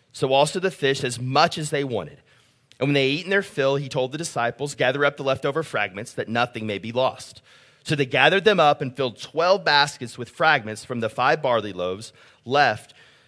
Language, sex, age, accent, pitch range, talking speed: English, male, 30-49, American, 130-160 Hz, 215 wpm